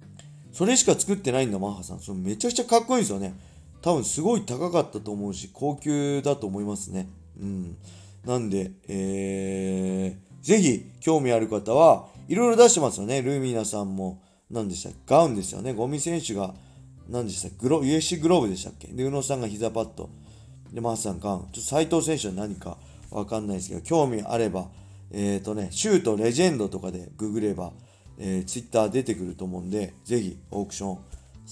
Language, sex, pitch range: Japanese, male, 95-140 Hz